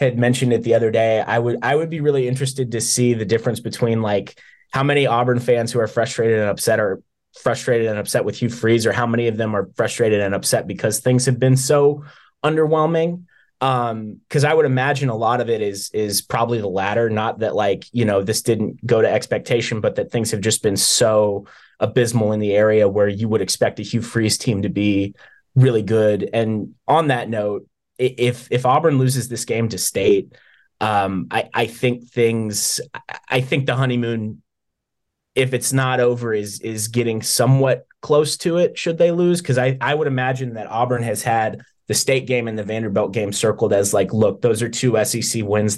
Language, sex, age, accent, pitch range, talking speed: English, male, 20-39, American, 110-130 Hz, 205 wpm